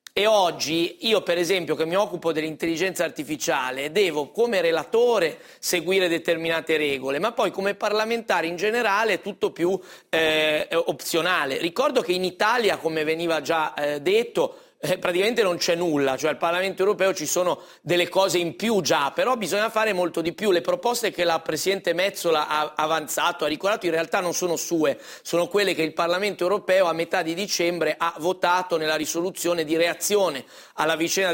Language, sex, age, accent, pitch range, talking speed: Italian, male, 30-49, native, 170-210 Hz, 170 wpm